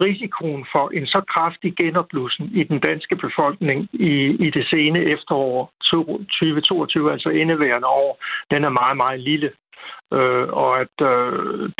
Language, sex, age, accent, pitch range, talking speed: Danish, male, 60-79, native, 150-180 Hz, 140 wpm